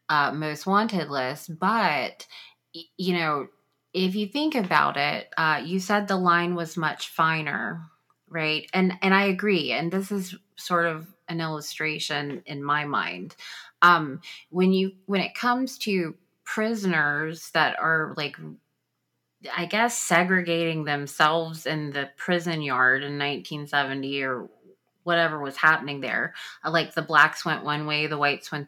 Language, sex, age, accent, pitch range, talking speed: English, female, 30-49, American, 150-185 Hz, 145 wpm